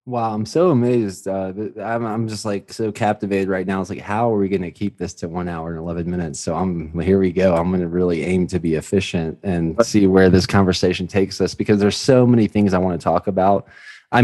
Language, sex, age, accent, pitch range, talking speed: English, male, 20-39, American, 90-110 Hz, 255 wpm